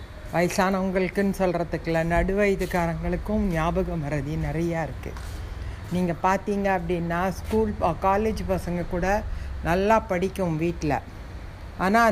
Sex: female